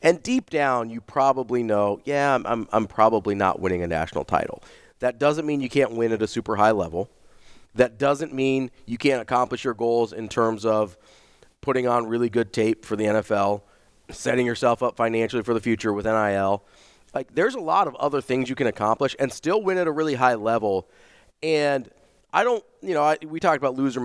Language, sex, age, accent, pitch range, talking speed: English, male, 30-49, American, 110-135 Hz, 200 wpm